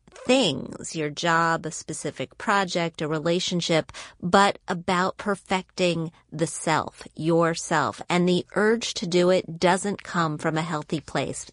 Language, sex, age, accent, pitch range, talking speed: English, female, 30-49, American, 160-195 Hz, 135 wpm